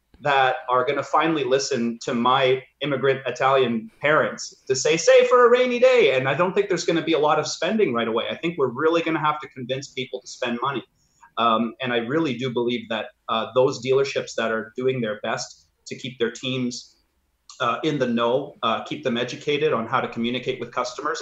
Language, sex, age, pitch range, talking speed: English, male, 30-49, 120-160 Hz, 210 wpm